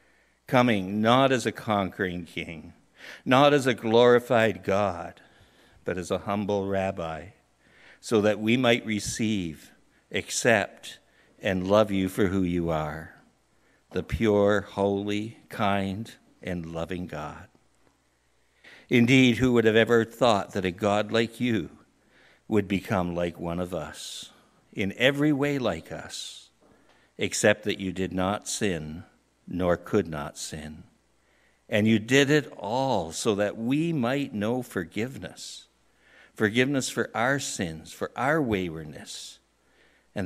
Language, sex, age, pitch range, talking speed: English, male, 60-79, 95-125 Hz, 130 wpm